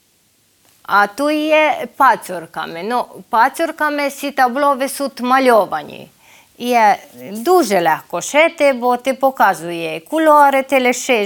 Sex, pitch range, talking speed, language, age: female, 215-275 Hz, 100 wpm, Ukrainian, 30-49